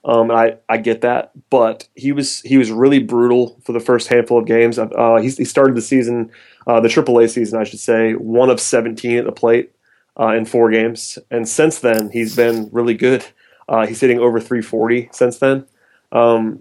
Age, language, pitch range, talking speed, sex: 30-49, English, 115-120 Hz, 205 wpm, male